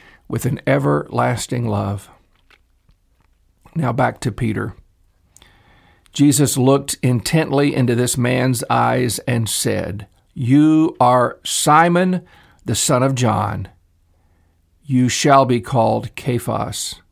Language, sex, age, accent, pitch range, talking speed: English, male, 50-69, American, 95-135 Hz, 100 wpm